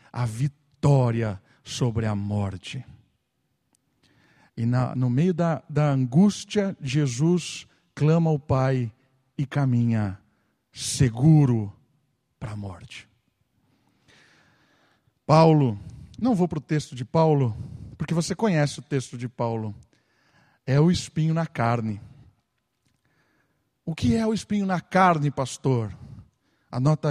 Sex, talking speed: male, 110 wpm